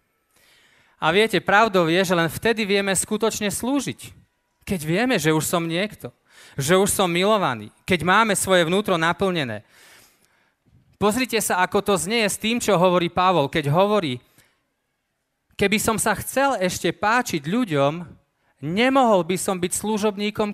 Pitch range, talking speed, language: 150-210 Hz, 145 wpm, Slovak